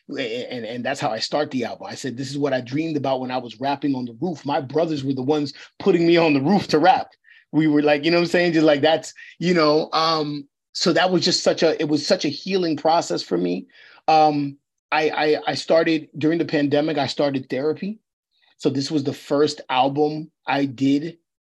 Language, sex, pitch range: English, male, 145-170 Hz